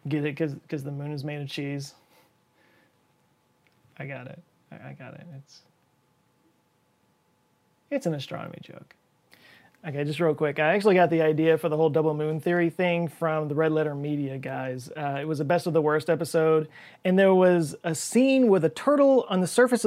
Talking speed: 190 wpm